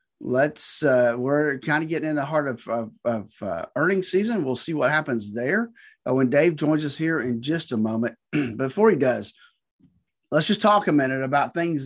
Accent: American